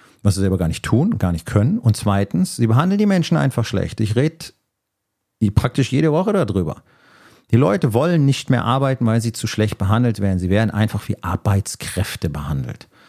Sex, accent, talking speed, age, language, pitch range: male, German, 190 wpm, 40-59, German, 95-115 Hz